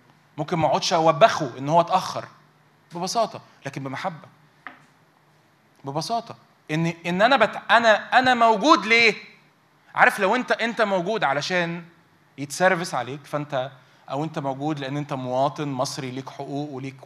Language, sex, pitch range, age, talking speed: Arabic, male, 140-205 Hz, 20-39, 135 wpm